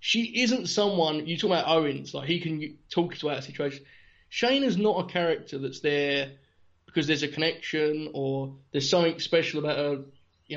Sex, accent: male, British